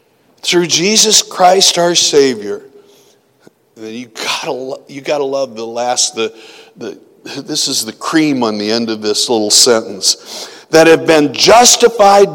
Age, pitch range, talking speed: 60-79, 120-175 Hz, 140 wpm